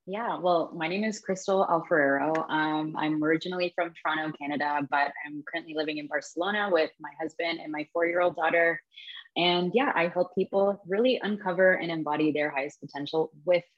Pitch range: 150-185 Hz